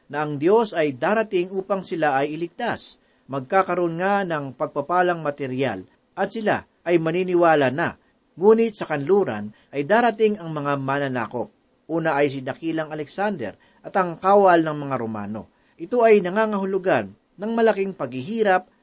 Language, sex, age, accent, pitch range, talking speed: Filipino, male, 40-59, native, 140-195 Hz, 140 wpm